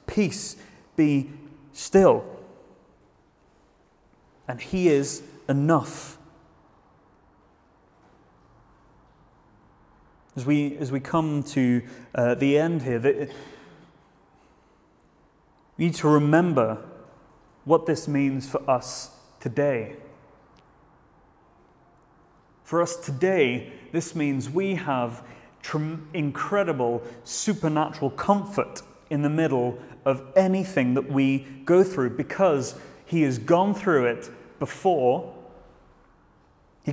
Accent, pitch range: British, 125-160 Hz